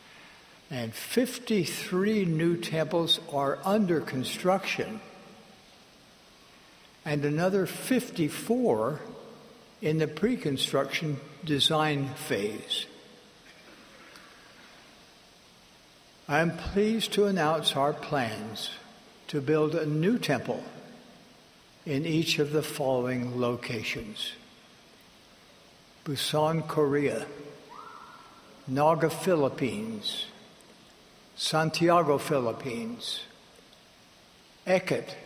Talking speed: 70 wpm